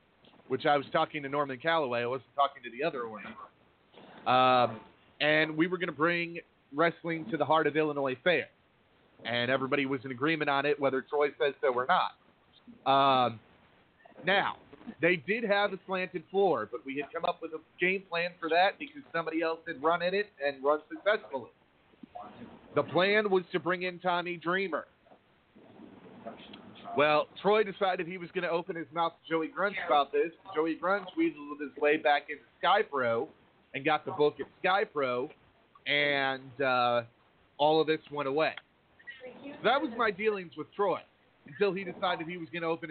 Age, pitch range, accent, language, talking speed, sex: 40-59, 145-190 Hz, American, English, 180 wpm, male